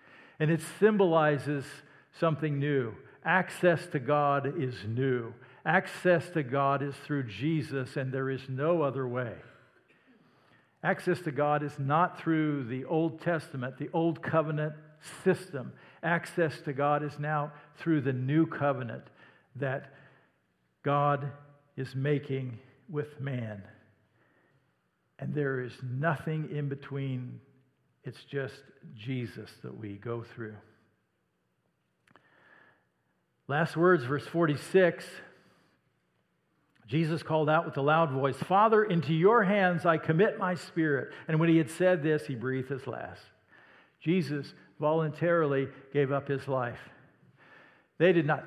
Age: 60-79